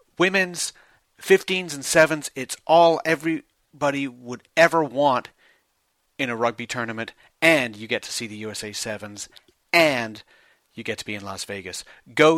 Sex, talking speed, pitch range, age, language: male, 150 wpm, 115-140 Hz, 40-59, English